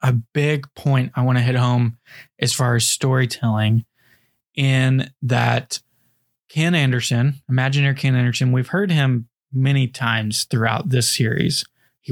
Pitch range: 125-145 Hz